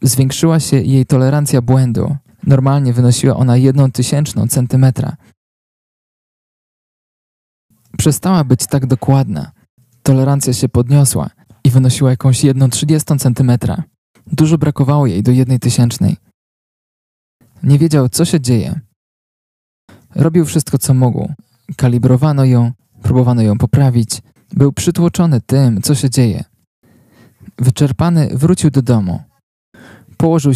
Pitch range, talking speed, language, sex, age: 120-145 Hz, 105 wpm, Polish, male, 20-39